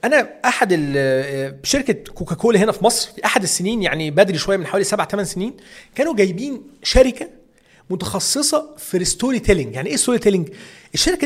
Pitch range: 175-230 Hz